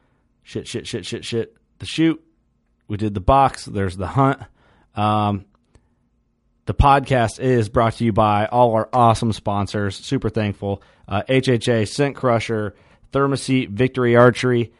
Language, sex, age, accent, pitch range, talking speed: English, male, 30-49, American, 105-130 Hz, 140 wpm